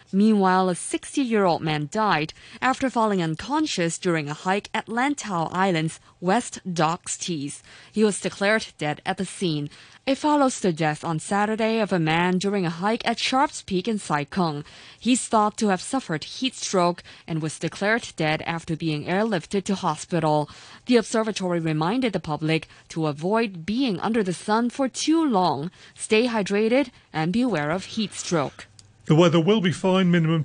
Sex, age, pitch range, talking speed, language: female, 20-39, 155-200 Hz, 170 wpm, English